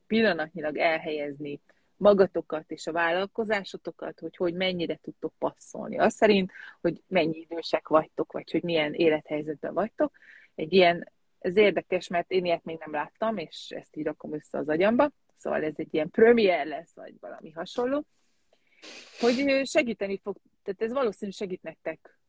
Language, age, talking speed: Hungarian, 30-49, 150 wpm